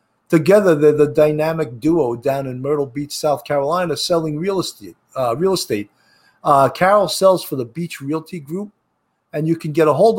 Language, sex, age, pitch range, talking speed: English, male, 50-69, 140-175 Hz, 185 wpm